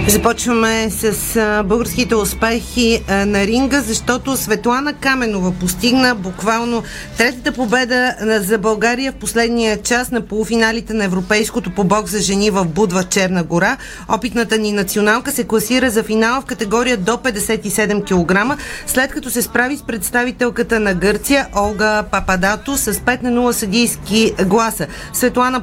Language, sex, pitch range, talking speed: Bulgarian, female, 210-250 Hz, 140 wpm